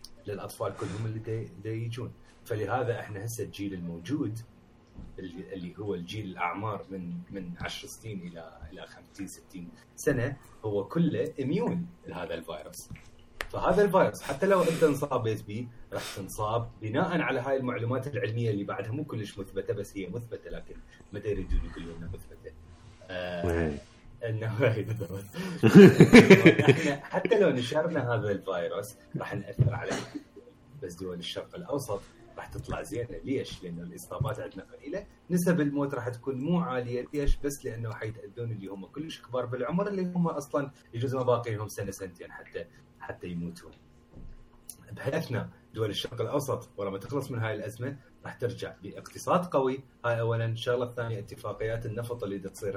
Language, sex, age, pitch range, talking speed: Arabic, male, 30-49, 100-140 Hz, 145 wpm